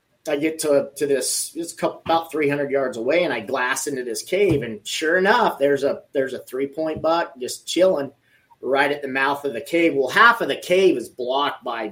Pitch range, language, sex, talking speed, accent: 130-170 Hz, English, male, 215 wpm, American